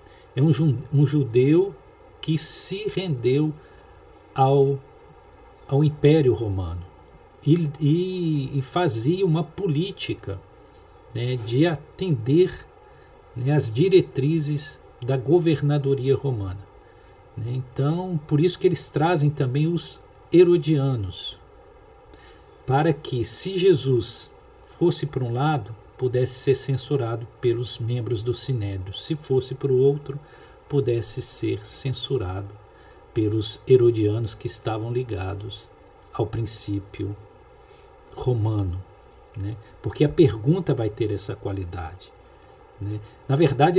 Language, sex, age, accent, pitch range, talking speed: Portuguese, male, 50-69, Brazilian, 115-160 Hz, 105 wpm